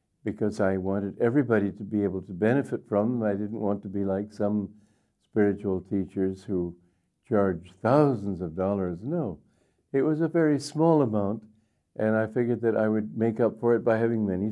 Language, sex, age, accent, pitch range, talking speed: English, male, 60-79, American, 105-130 Hz, 180 wpm